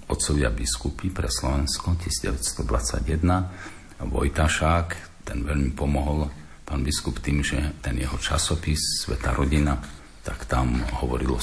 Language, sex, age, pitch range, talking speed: Slovak, male, 50-69, 65-85 Hz, 110 wpm